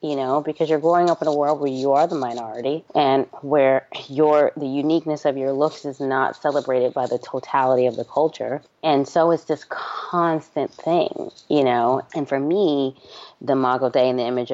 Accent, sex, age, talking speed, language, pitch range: American, female, 20-39, 200 wpm, English, 130-155 Hz